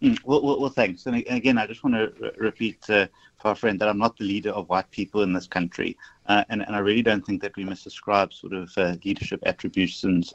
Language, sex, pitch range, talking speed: English, male, 110-145 Hz, 240 wpm